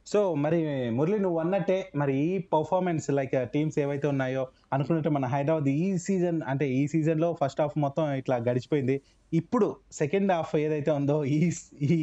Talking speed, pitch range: 155 wpm, 140-185 Hz